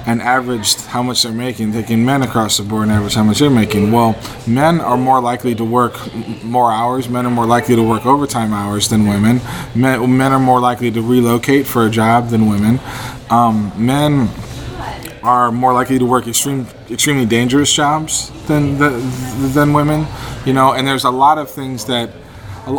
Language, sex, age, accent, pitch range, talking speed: English, male, 20-39, American, 115-130 Hz, 190 wpm